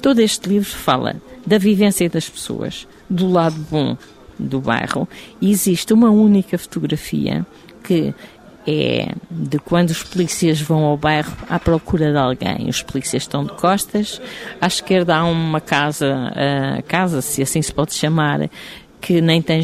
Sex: female